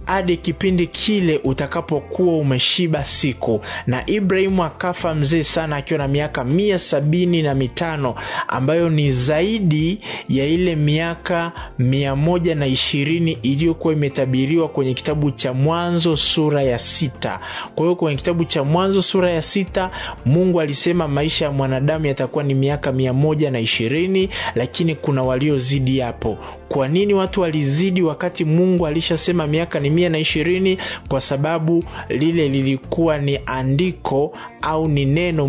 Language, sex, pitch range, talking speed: Swahili, male, 135-170 Hz, 135 wpm